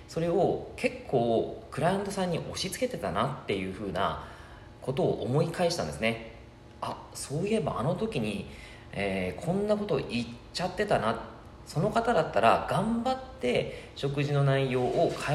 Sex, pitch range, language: male, 105-170 Hz, Japanese